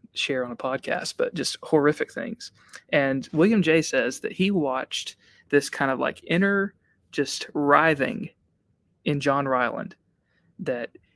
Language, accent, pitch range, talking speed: English, American, 135-165 Hz, 140 wpm